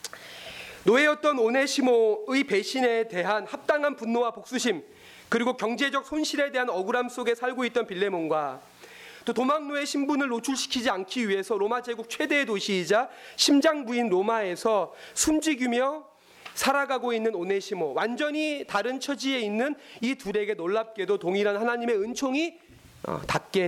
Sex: male